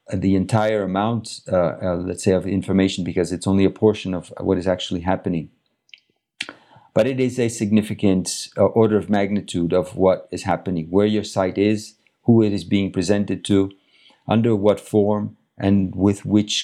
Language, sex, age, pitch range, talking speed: English, male, 50-69, 90-110 Hz, 175 wpm